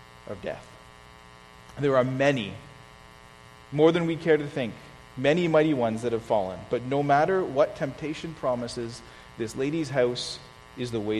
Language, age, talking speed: English, 40-59, 155 wpm